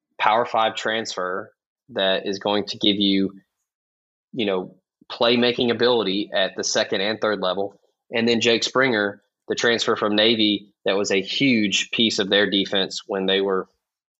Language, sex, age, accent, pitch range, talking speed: English, male, 20-39, American, 100-120 Hz, 160 wpm